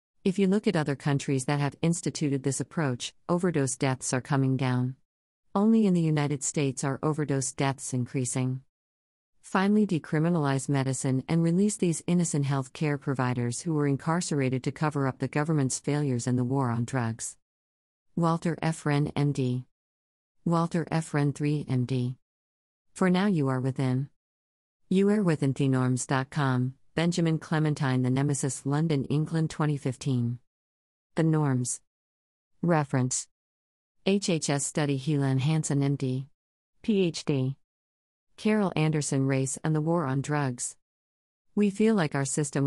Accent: American